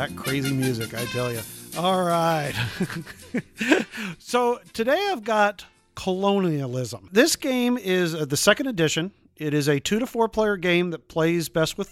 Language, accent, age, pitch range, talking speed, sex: English, American, 40-59, 150-205 Hz, 155 wpm, male